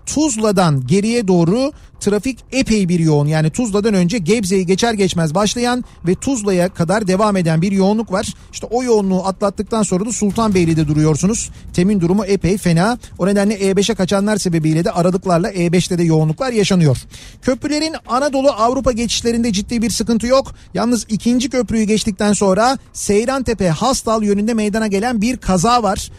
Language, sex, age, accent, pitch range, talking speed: Turkish, male, 40-59, native, 175-225 Hz, 150 wpm